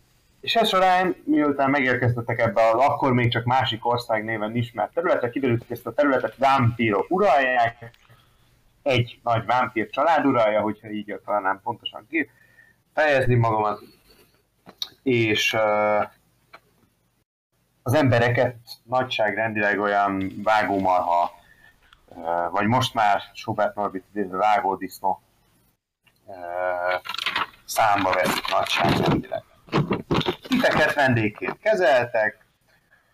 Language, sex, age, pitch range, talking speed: Hungarian, male, 30-49, 105-125 Hz, 100 wpm